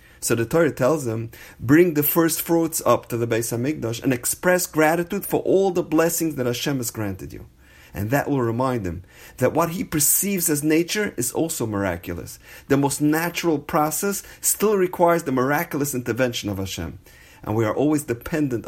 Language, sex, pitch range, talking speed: English, male, 105-150 Hz, 180 wpm